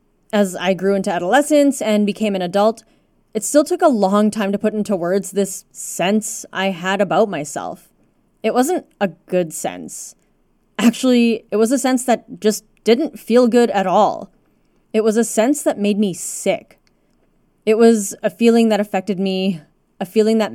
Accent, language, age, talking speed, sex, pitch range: American, English, 20-39, 175 wpm, female, 185-230 Hz